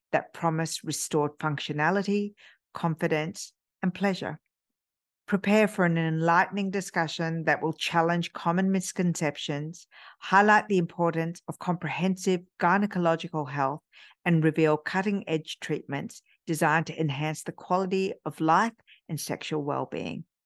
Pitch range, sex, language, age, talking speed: 155-185 Hz, female, English, 50-69, 110 wpm